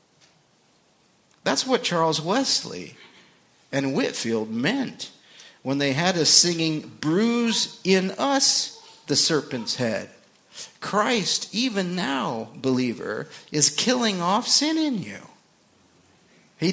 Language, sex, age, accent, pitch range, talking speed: English, male, 50-69, American, 135-210 Hz, 105 wpm